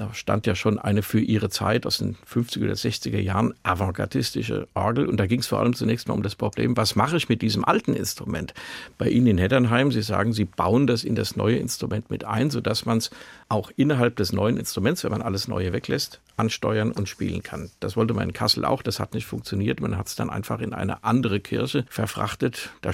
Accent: German